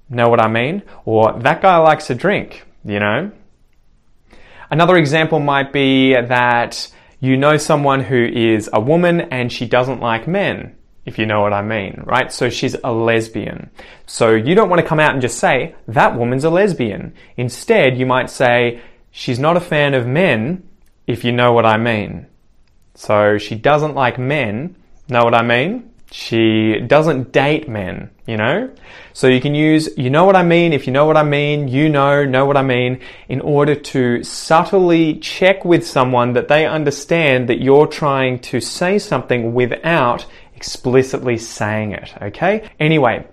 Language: English